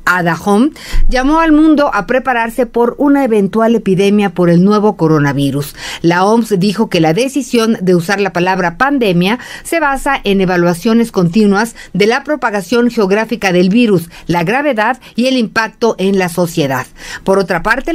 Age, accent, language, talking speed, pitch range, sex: 40-59, Mexican, English, 155 wpm, 185-250 Hz, female